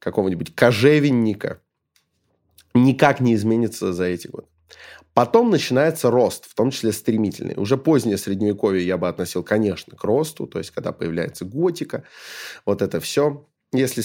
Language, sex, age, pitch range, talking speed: Russian, male, 20-39, 95-125 Hz, 140 wpm